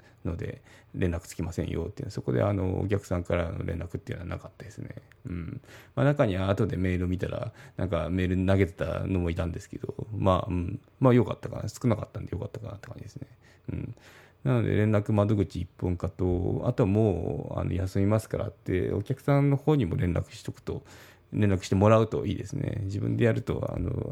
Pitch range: 90-120 Hz